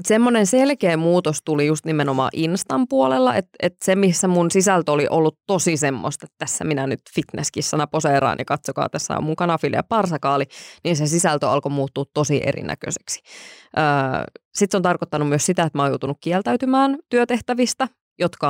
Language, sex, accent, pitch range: Finnish, female, native, 145-190 Hz